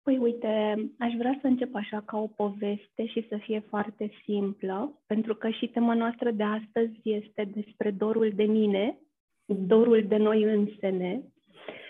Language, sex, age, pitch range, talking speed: Romanian, female, 20-39, 215-250 Hz, 155 wpm